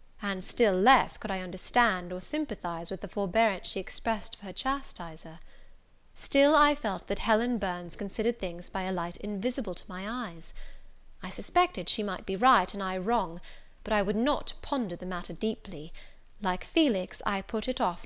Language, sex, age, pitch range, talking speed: English, female, 30-49, 185-255 Hz, 180 wpm